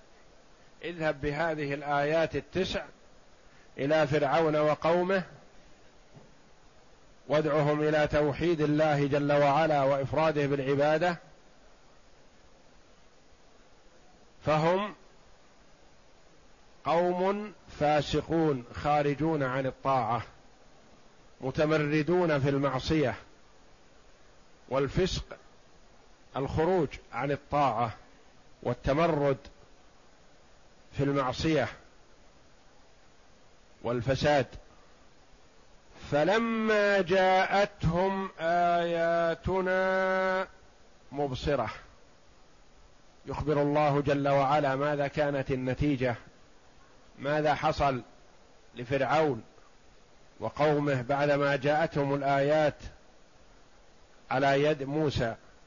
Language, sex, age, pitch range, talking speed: Arabic, male, 50-69, 140-165 Hz, 55 wpm